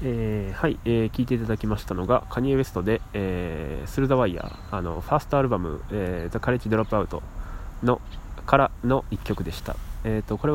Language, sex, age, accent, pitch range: Japanese, male, 20-39, native, 85-120 Hz